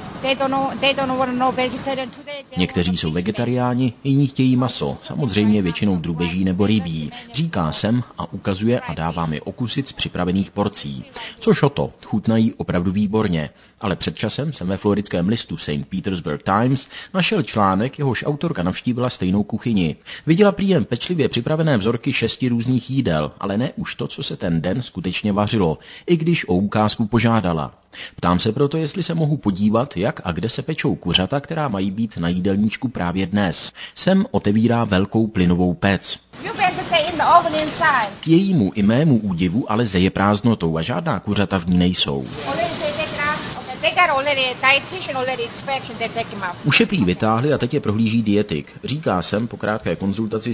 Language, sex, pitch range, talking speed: Czech, male, 95-155 Hz, 140 wpm